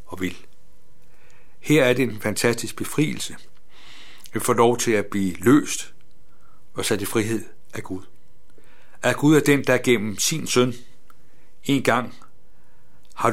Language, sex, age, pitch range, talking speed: Danish, male, 60-79, 105-130 Hz, 145 wpm